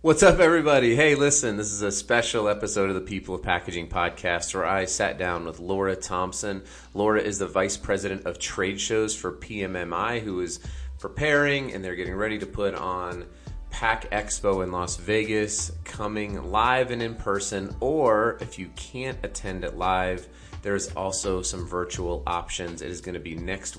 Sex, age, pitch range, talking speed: male, 30-49, 90-105 Hz, 180 wpm